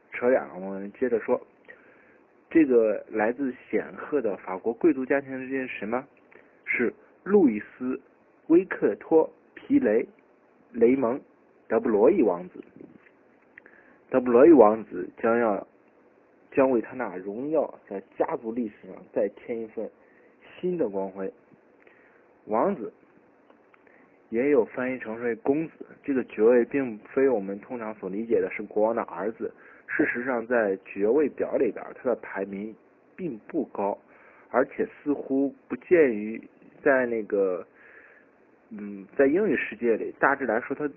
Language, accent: Chinese, native